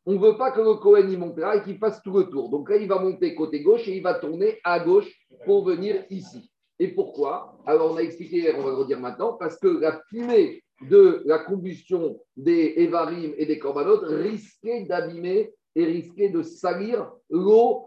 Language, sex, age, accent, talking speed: French, male, 50-69, French, 210 wpm